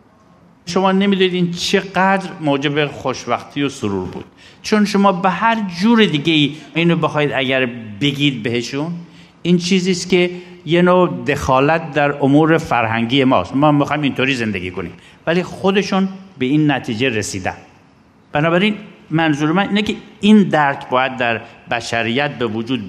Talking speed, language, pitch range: 140 wpm, Persian, 125-175 Hz